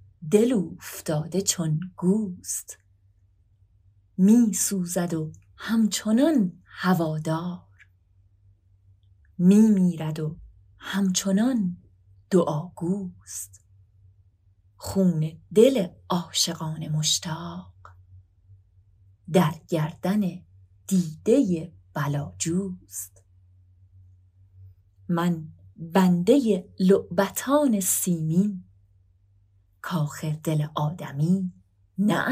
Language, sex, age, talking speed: Persian, female, 30-49, 60 wpm